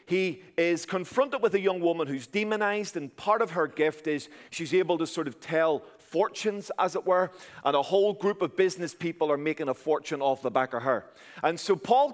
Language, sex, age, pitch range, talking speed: English, male, 40-59, 140-195 Hz, 215 wpm